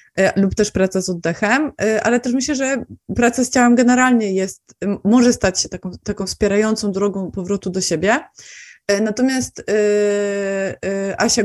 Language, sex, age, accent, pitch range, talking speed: Polish, female, 20-39, native, 190-230 Hz, 125 wpm